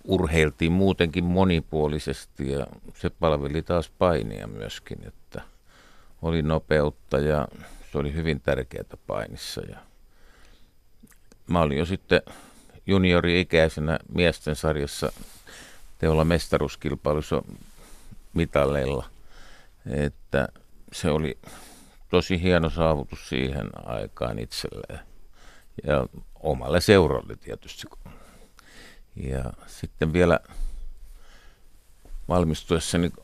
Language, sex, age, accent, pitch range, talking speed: Finnish, male, 50-69, native, 70-85 Hz, 85 wpm